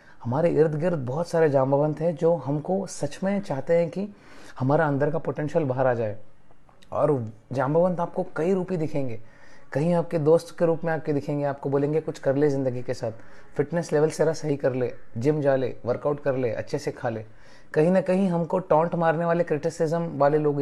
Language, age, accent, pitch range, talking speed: English, 30-49, Indian, 135-165 Hz, 165 wpm